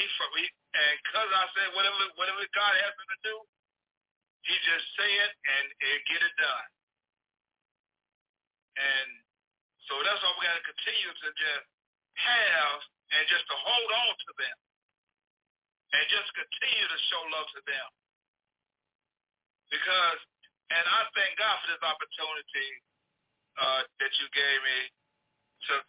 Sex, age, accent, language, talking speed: male, 50-69, American, English, 135 wpm